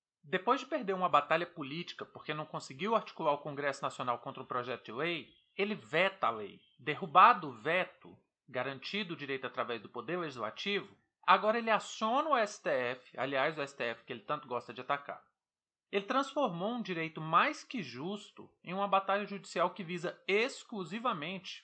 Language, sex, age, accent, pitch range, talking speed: Portuguese, male, 40-59, Brazilian, 150-215 Hz, 165 wpm